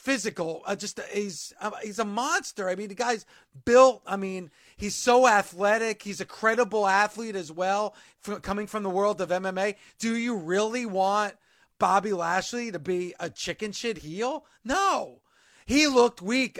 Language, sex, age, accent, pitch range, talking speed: English, male, 40-59, American, 185-230 Hz, 170 wpm